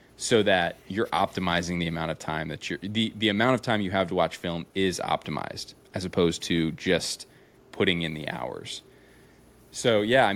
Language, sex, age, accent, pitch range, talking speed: English, male, 20-39, American, 85-100 Hz, 190 wpm